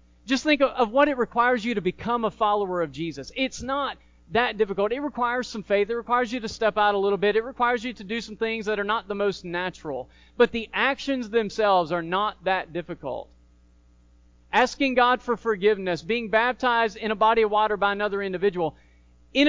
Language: English